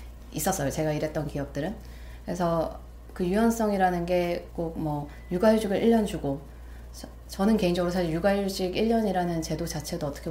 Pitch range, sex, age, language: 155-205 Hz, female, 30-49, Korean